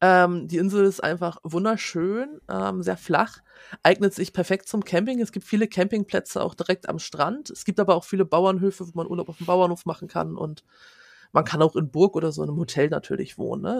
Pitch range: 165-195 Hz